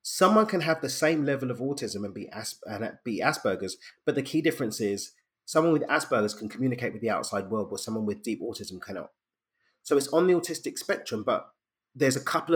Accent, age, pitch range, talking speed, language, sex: British, 30-49, 105-145 Hz, 210 wpm, English, male